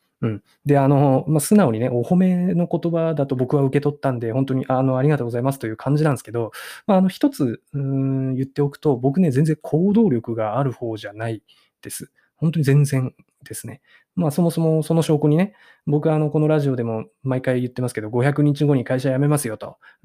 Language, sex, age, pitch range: Japanese, male, 20-39, 115-150 Hz